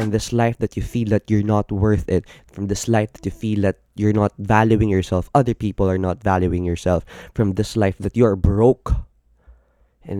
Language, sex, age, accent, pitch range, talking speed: Filipino, male, 20-39, native, 95-115 Hz, 210 wpm